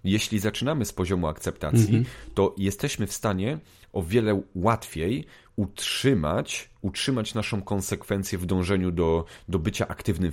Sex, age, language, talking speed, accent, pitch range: male, 30-49, Polish, 130 wpm, native, 90-110 Hz